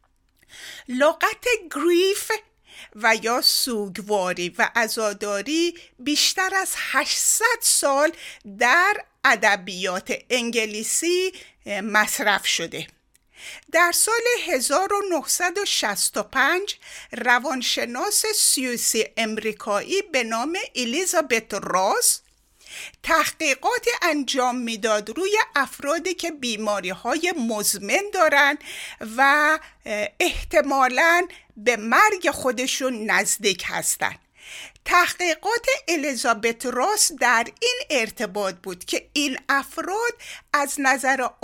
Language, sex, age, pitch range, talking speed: Persian, female, 50-69, 230-350 Hz, 80 wpm